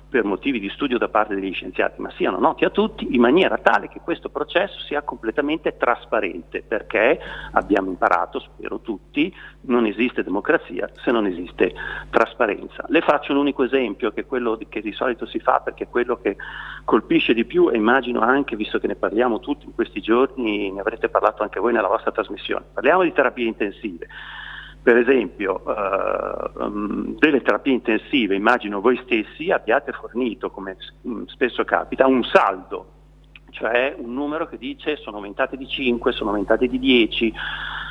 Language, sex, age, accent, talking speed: Italian, male, 40-59, native, 165 wpm